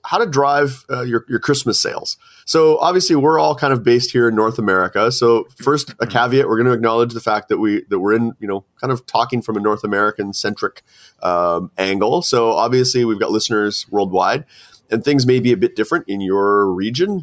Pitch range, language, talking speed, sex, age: 100-130 Hz, English, 225 wpm, male, 30-49